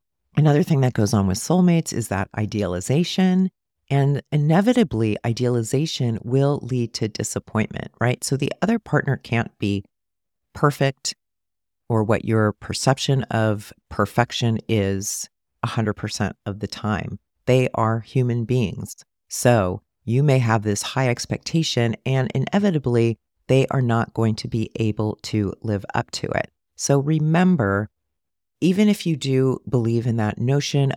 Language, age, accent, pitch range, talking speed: English, 40-59, American, 105-145 Hz, 140 wpm